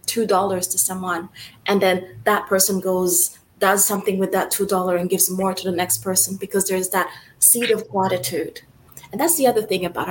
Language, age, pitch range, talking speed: English, 20-39, 190-245 Hz, 200 wpm